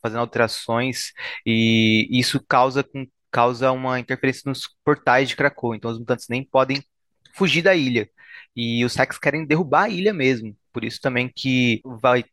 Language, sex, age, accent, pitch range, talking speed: Portuguese, male, 20-39, Brazilian, 115-135 Hz, 160 wpm